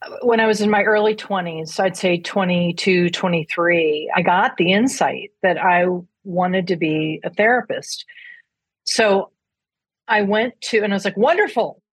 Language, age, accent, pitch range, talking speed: English, 40-59, American, 180-230 Hz, 155 wpm